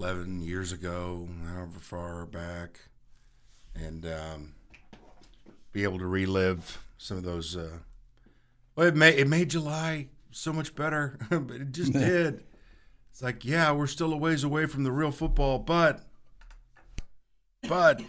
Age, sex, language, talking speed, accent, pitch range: 50-69, male, English, 145 wpm, American, 90-130 Hz